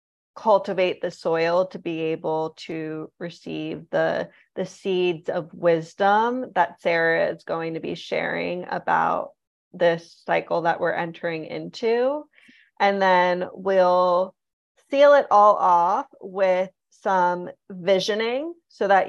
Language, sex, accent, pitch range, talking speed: English, female, American, 170-205 Hz, 125 wpm